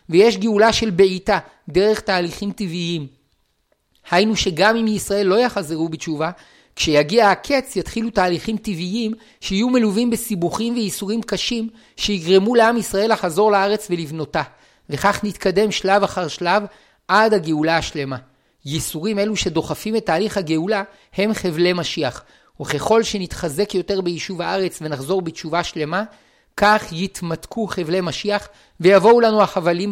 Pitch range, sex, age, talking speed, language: 160-205 Hz, male, 50-69, 125 wpm, Hebrew